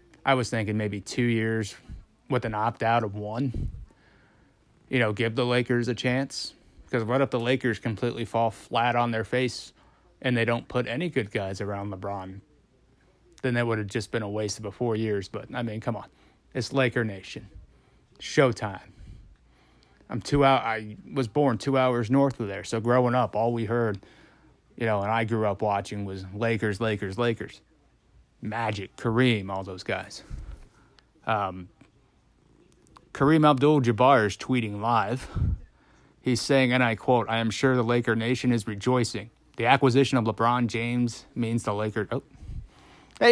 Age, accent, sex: 30-49, American, male